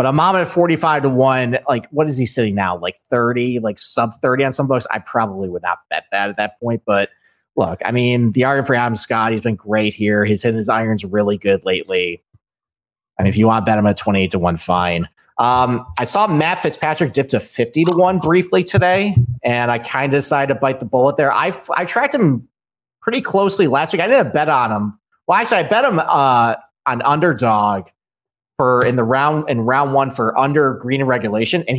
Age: 30-49